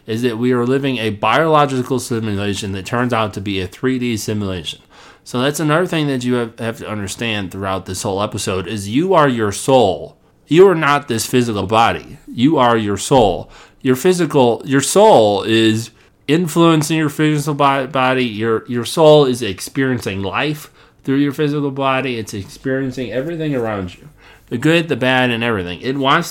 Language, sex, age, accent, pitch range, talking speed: English, male, 30-49, American, 105-145 Hz, 175 wpm